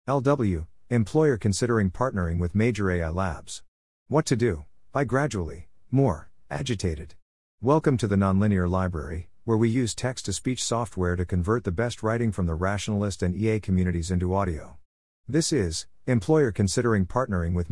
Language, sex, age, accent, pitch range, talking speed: English, male, 50-69, American, 90-115 Hz, 155 wpm